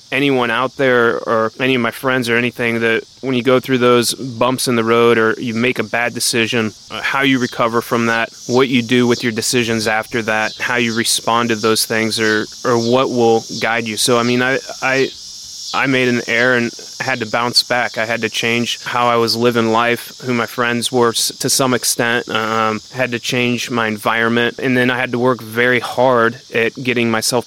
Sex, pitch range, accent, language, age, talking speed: male, 115-125 Hz, American, English, 20-39, 215 wpm